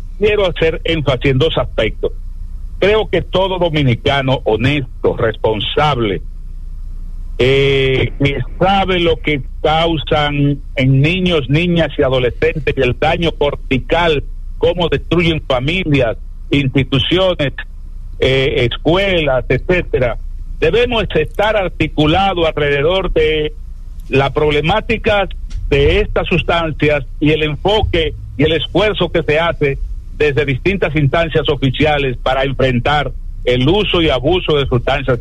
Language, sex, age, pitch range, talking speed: English, male, 60-79, 130-175 Hz, 110 wpm